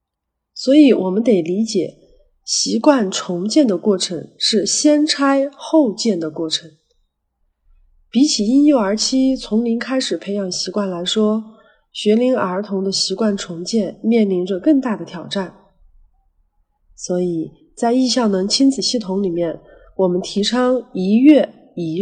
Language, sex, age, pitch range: Chinese, female, 30-49, 180-245 Hz